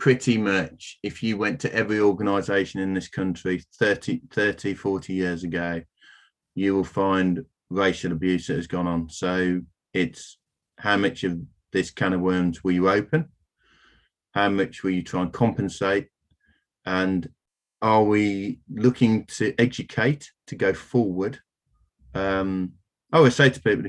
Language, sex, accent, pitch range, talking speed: English, male, British, 90-105 Hz, 150 wpm